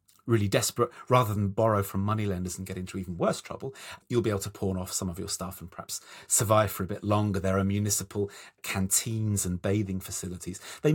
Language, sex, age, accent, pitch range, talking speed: English, male, 30-49, British, 100-130 Hz, 210 wpm